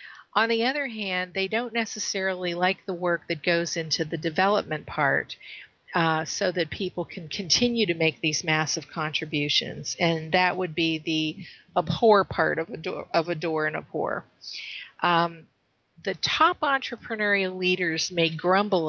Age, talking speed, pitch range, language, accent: 50-69, 155 wpm, 160-185 Hz, English, American